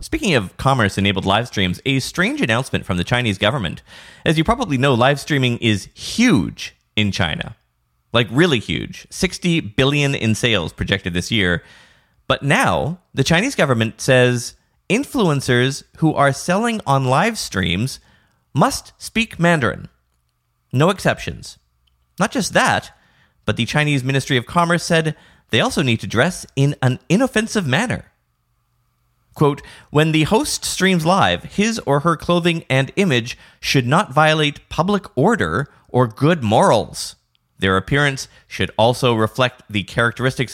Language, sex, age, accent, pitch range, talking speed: English, male, 30-49, American, 105-150 Hz, 140 wpm